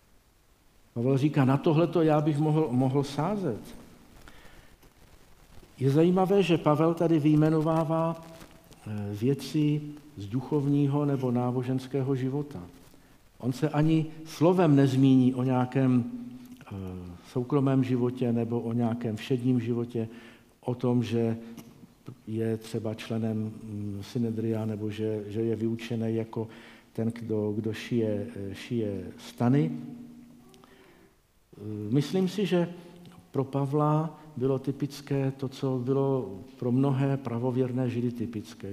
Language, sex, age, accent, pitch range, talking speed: Czech, male, 50-69, native, 115-145 Hz, 110 wpm